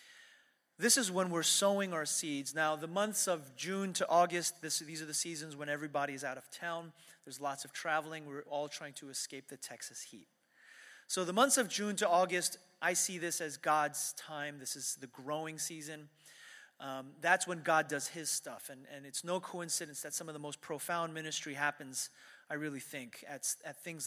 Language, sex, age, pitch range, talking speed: English, male, 30-49, 150-185 Hz, 200 wpm